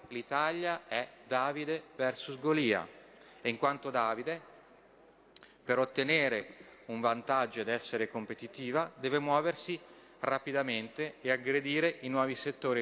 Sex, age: male, 30-49